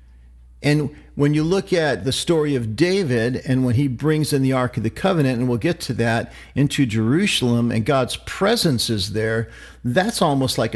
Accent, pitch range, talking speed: American, 110-150 Hz, 190 wpm